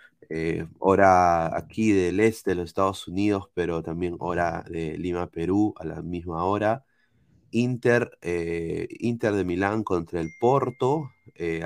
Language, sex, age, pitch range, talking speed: Spanish, male, 30-49, 95-120 Hz, 135 wpm